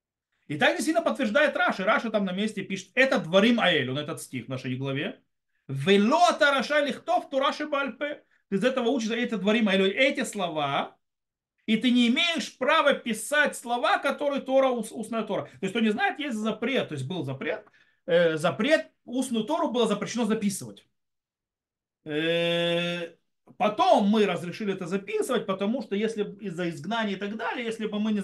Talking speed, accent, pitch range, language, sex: 170 wpm, native, 175-260 Hz, Russian, male